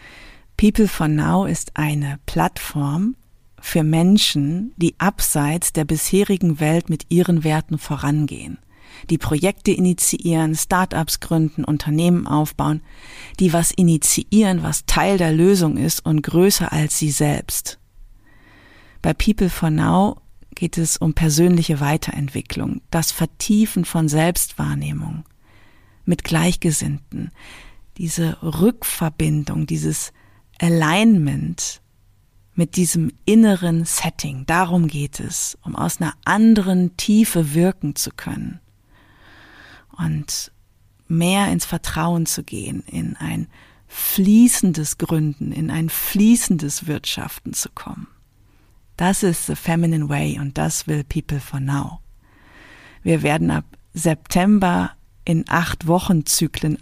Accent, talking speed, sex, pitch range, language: German, 110 wpm, female, 145-180 Hz, German